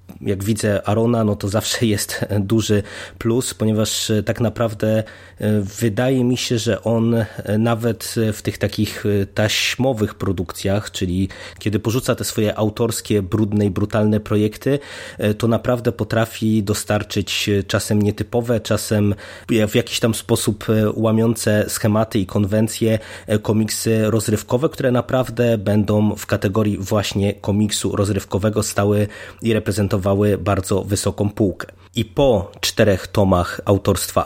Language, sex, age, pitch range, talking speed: Polish, male, 20-39, 95-110 Hz, 120 wpm